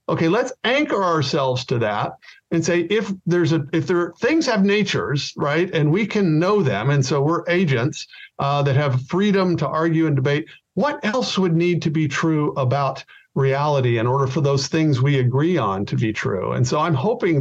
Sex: male